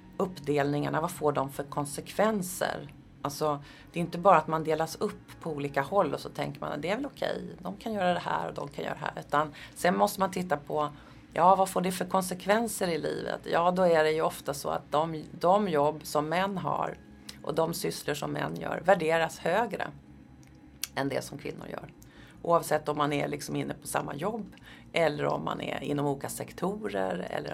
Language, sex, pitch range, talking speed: Swedish, female, 145-180 Hz, 210 wpm